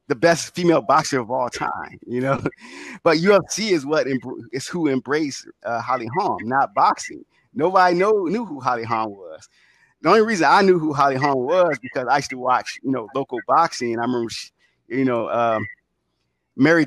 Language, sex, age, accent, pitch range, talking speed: English, male, 30-49, American, 120-150 Hz, 185 wpm